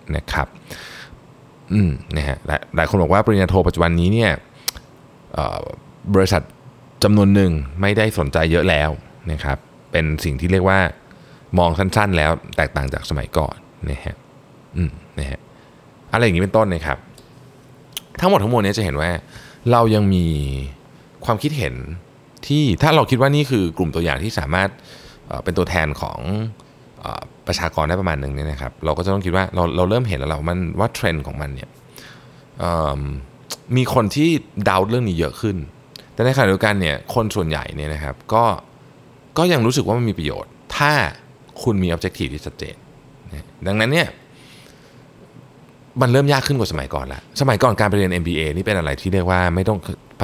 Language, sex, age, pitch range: Thai, male, 20-39, 80-115 Hz